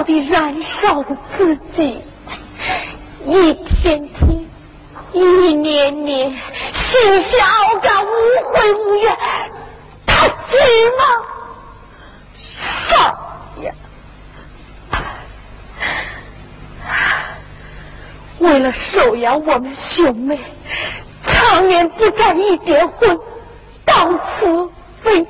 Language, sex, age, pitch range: Chinese, female, 40-59, 325-440 Hz